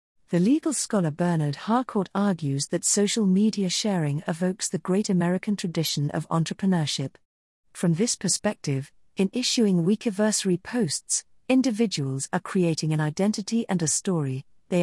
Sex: female